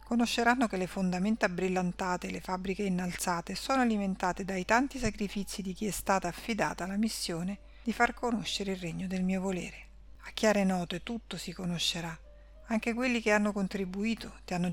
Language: Italian